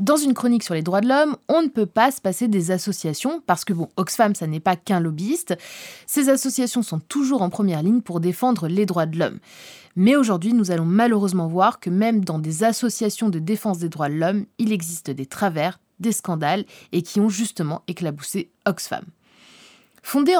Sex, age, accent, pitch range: female, 20-39, French, 170-230 Hz